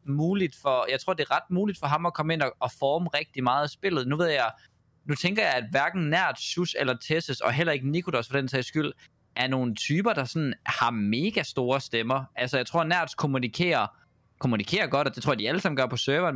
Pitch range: 125-160 Hz